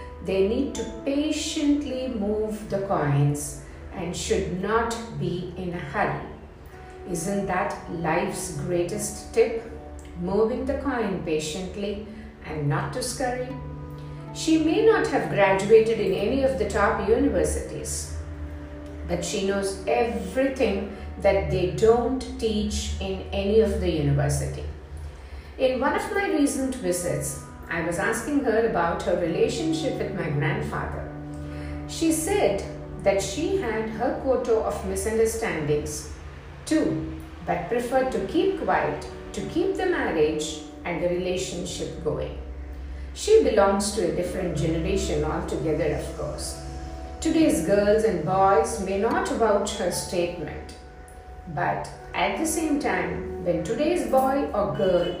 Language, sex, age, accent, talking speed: Tamil, female, 50-69, native, 130 wpm